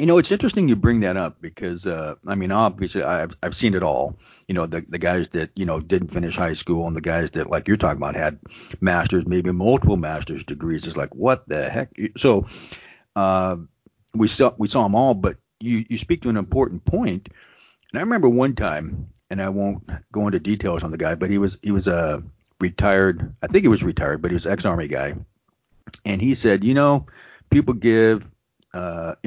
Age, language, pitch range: 50-69, English, 90-115 Hz